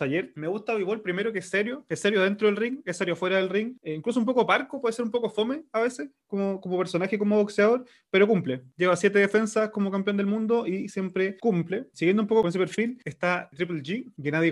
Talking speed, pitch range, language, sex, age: 245 wpm, 165-205 Hz, Spanish, male, 20-39